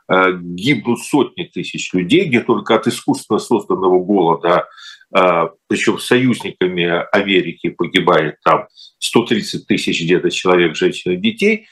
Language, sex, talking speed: Russian, male, 115 wpm